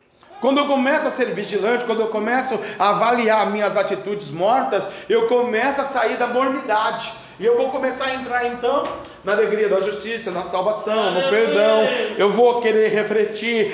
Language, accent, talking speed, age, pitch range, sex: Portuguese, Brazilian, 170 wpm, 40-59, 210-265 Hz, male